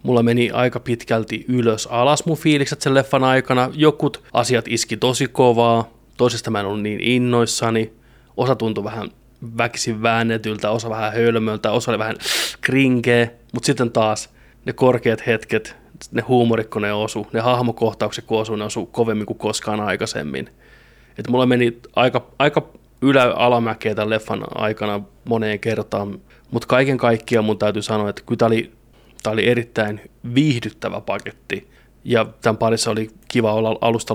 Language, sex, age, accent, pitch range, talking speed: Finnish, male, 20-39, native, 110-125 Hz, 150 wpm